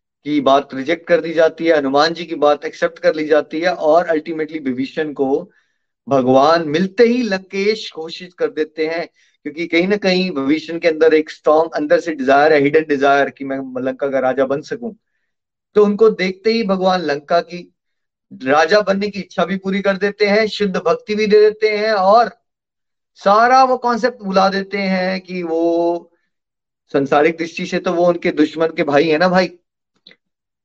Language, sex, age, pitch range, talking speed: Hindi, male, 30-49, 155-210 Hz, 180 wpm